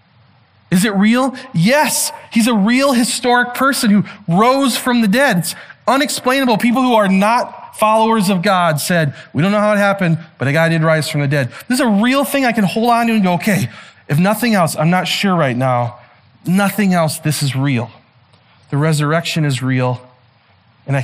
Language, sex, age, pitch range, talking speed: English, male, 30-49, 125-175 Hz, 200 wpm